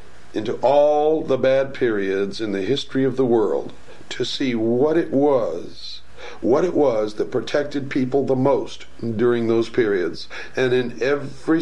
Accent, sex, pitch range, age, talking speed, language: American, male, 115-145 Hz, 60-79, 155 wpm, English